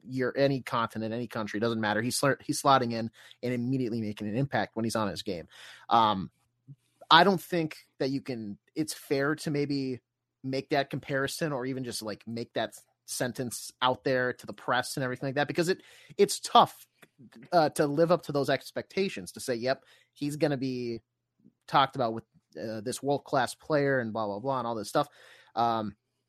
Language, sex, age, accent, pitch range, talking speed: English, male, 30-49, American, 115-145 Hz, 195 wpm